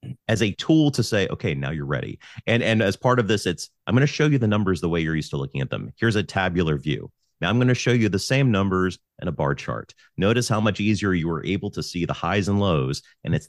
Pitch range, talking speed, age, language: 85-115 Hz, 280 wpm, 30-49, English